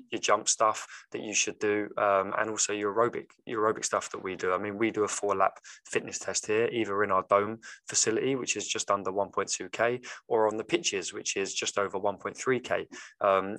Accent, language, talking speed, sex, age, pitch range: British, English, 210 wpm, male, 20-39, 100-120 Hz